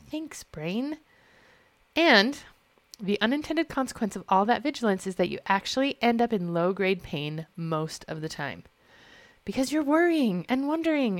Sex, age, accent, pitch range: female, 30-49, American, 190-285 Hz